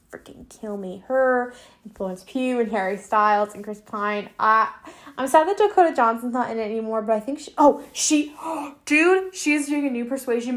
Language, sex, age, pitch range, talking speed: English, female, 10-29, 215-275 Hz, 205 wpm